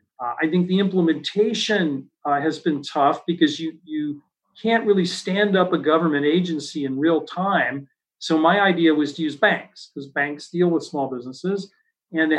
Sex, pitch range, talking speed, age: male, 145-190 Hz, 180 wpm, 40-59